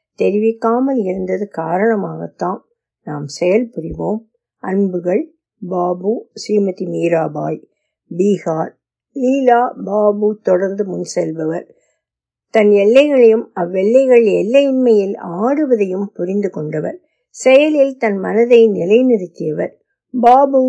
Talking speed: 70 wpm